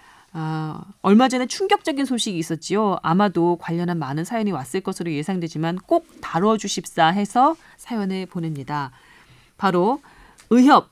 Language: Korean